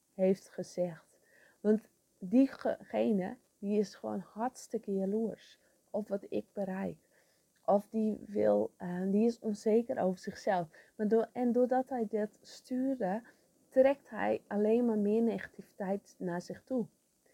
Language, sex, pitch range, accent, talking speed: English, female, 190-235 Hz, Dutch, 130 wpm